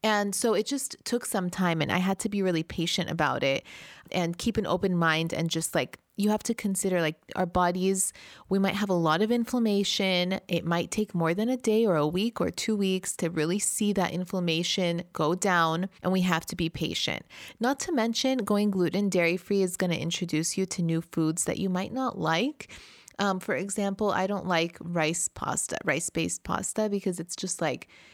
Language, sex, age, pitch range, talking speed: English, female, 20-39, 170-210 Hz, 205 wpm